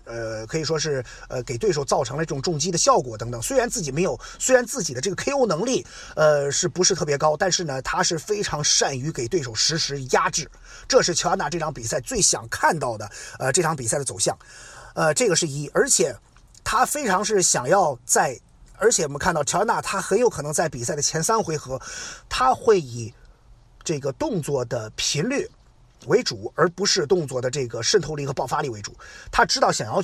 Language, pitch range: Chinese, 140-190 Hz